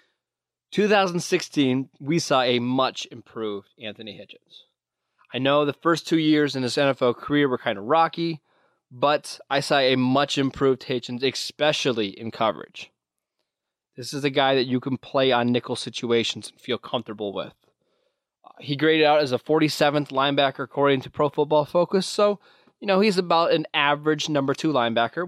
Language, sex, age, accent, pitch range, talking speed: English, male, 20-39, American, 120-150 Hz, 165 wpm